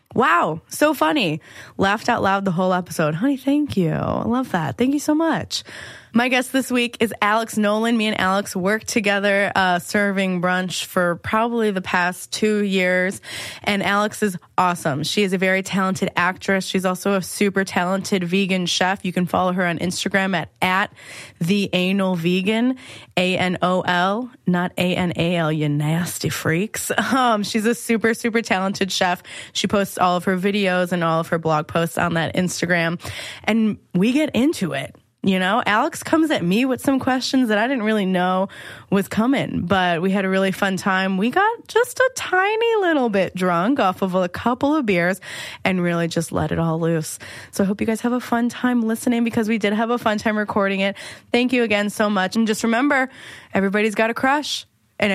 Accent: American